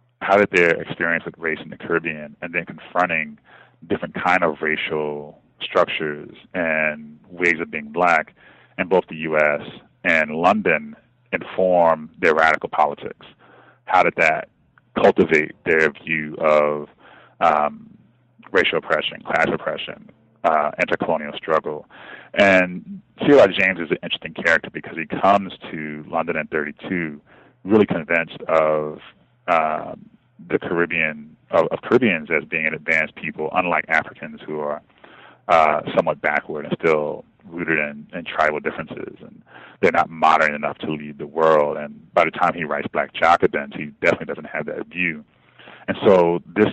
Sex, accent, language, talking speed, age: male, American, English, 150 wpm, 30-49